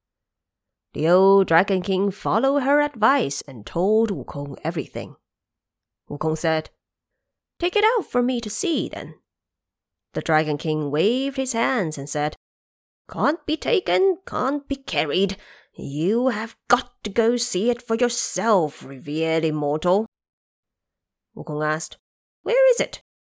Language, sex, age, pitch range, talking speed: English, female, 20-39, 155-250 Hz, 135 wpm